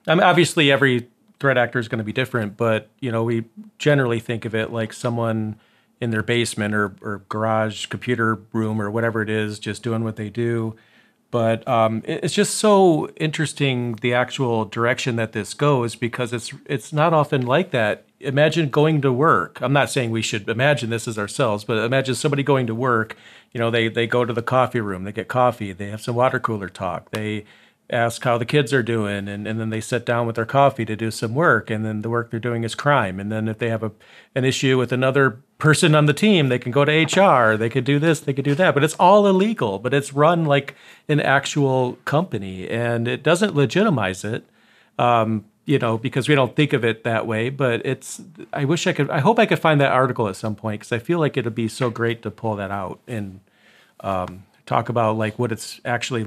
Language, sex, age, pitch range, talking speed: English, male, 40-59, 110-140 Hz, 225 wpm